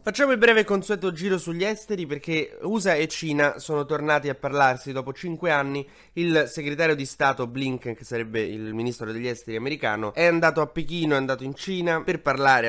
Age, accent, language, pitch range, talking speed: 20-39, native, Italian, 115-150 Hz, 190 wpm